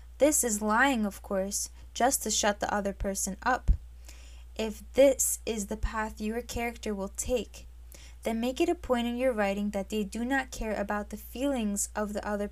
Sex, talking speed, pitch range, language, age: female, 190 wpm, 200-230 Hz, English, 10-29